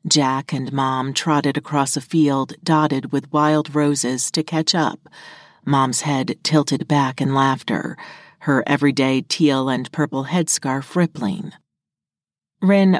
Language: English